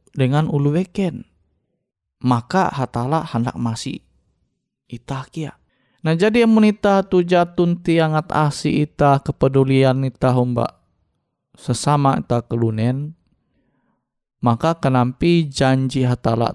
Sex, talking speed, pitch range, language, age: male, 90 wpm, 130-175 Hz, Indonesian, 20-39